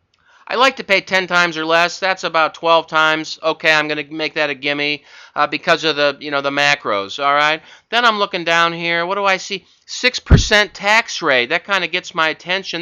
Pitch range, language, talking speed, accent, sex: 145-180 Hz, English, 225 wpm, American, male